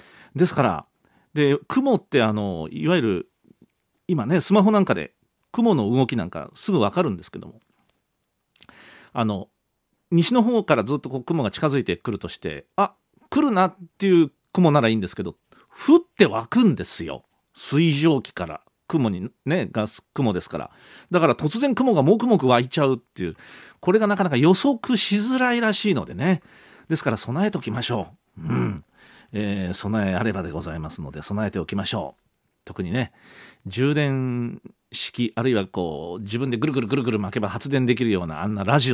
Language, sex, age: Japanese, male, 40-59